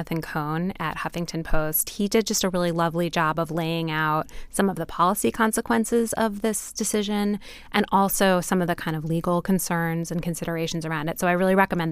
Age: 20-39